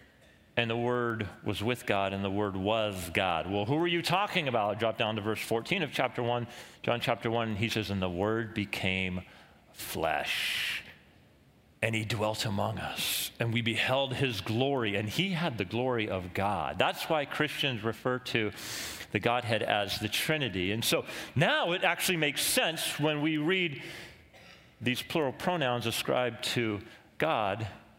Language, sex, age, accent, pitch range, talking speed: English, male, 40-59, American, 105-135 Hz, 165 wpm